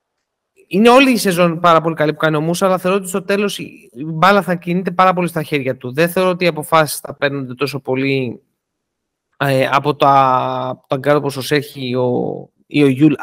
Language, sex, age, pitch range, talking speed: Greek, male, 30-49, 150-195 Hz, 200 wpm